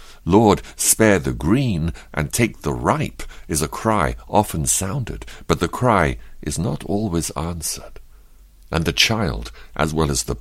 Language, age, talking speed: English, 60-79, 155 wpm